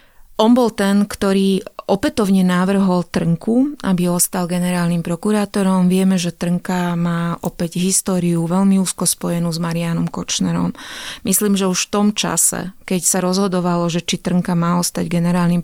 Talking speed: 145 wpm